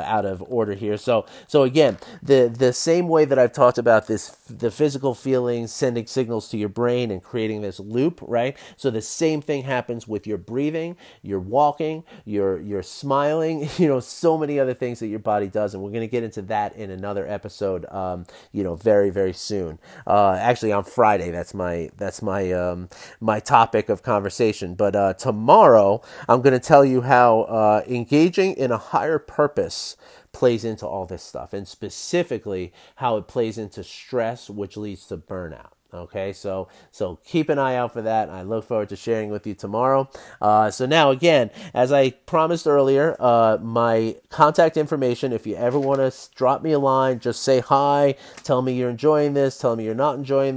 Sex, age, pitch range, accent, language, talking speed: male, 30-49, 105-135 Hz, American, English, 190 wpm